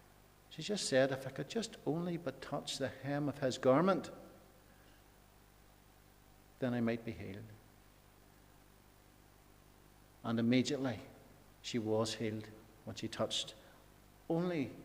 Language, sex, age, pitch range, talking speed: English, male, 60-79, 115-145 Hz, 115 wpm